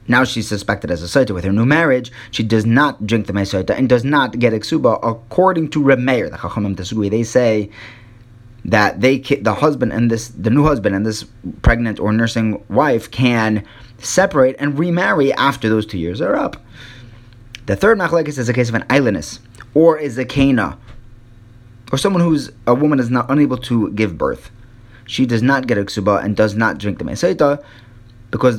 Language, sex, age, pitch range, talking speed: English, male, 30-49, 110-140 Hz, 185 wpm